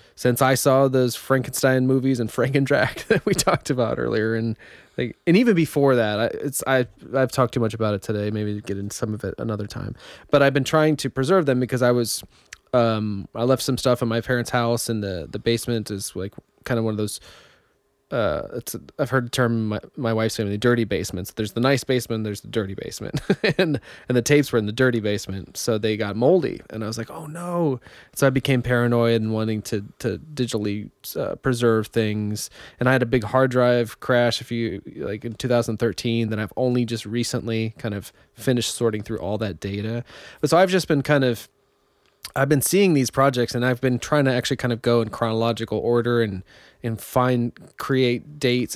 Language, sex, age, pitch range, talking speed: English, male, 20-39, 110-130 Hz, 215 wpm